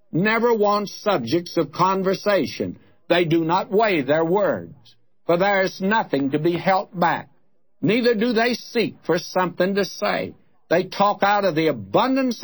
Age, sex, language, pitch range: 60-79, male, English, 145-190 Hz